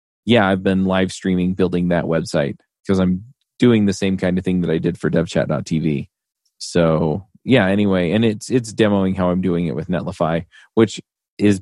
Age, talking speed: 20-39, 185 wpm